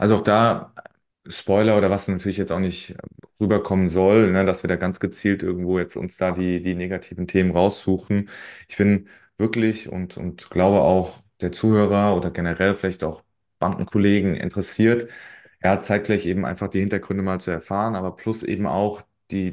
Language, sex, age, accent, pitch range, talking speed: German, male, 30-49, German, 90-105 Hz, 180 wpm